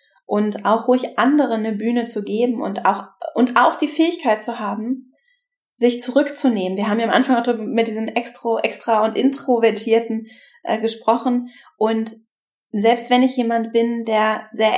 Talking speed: 160 wpm